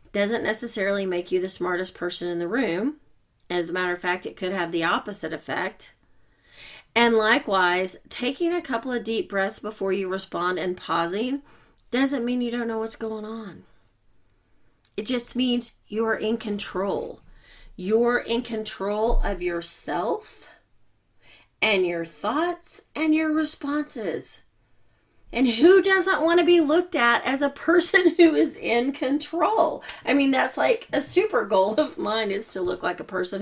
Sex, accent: female, American